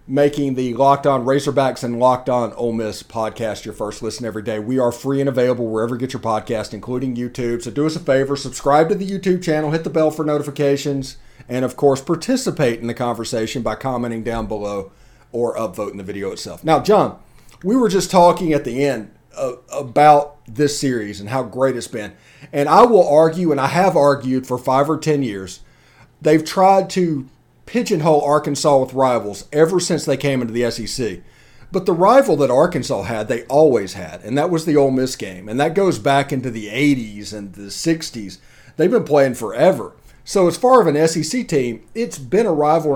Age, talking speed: 40-59, 200 wpm